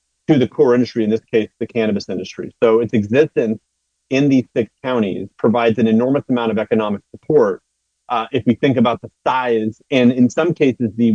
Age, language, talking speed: 30-49, English, 195 wpm